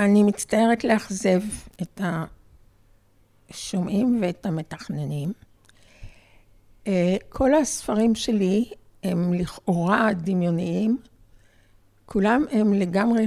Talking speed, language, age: 70 wpm, Hebrew, 60-79